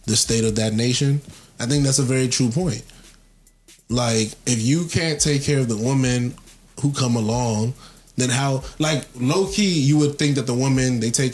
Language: English